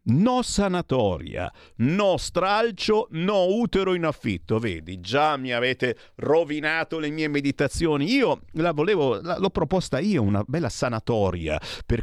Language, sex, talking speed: Italian, male, 130 wpm